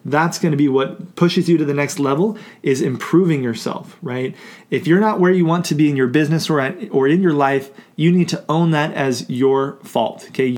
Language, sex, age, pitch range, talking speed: English, male, 30-49, 135-180 Hz, 235 wpm